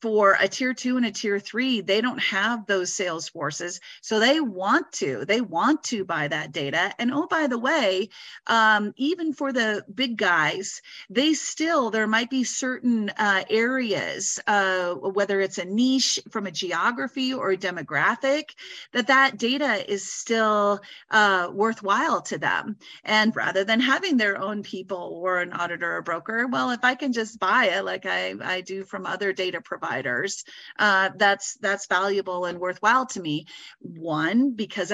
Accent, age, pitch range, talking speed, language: American, 40-59, 185-240 Hz, 170 wpm, English